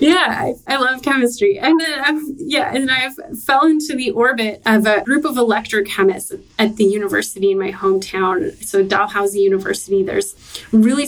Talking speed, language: 170 wpm, English